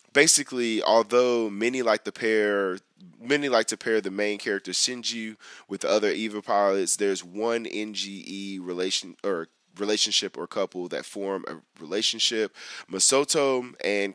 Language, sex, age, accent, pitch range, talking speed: English, male, 20-39, American, 95-115 Hz, 140 wpm